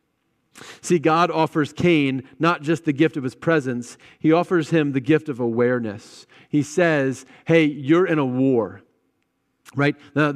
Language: English